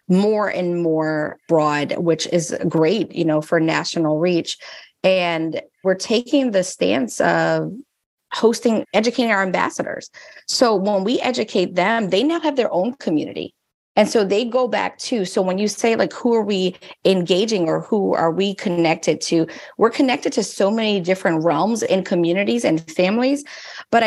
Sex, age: female, 30-49